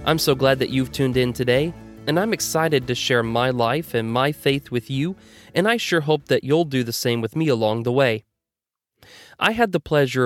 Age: 30-49